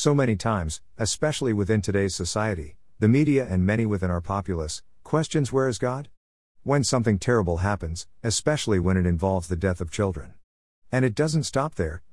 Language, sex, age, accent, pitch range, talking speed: English, male, 50-69, American, 90-120 Hz, 175 wpm